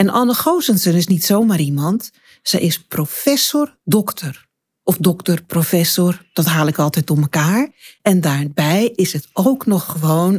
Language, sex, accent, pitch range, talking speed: Dutch, female, Dutch, 155-210 Hz, 145 wpm